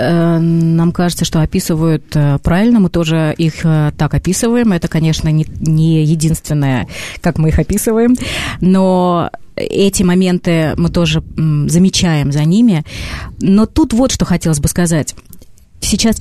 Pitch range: 150-185 Hz